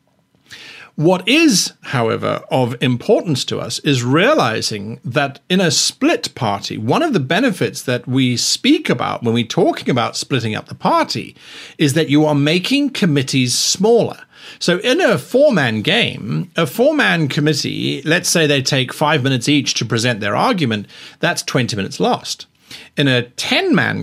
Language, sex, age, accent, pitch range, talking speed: English, male, 50-69, British, 120-155 Hz, 155 wpm